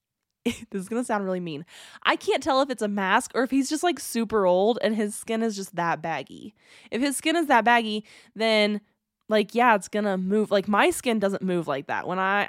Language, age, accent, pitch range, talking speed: English, 20-39, American, 175-220 Hz, 230 wpm